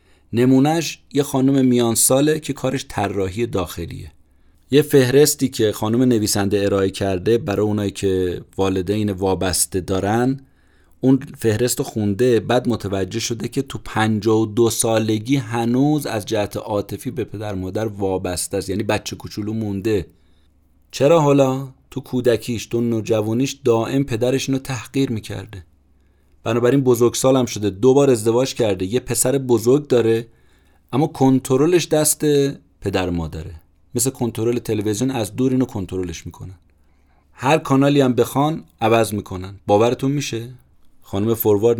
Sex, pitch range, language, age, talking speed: male, 95-125 Hz, Persian, 30-49, 135 wpm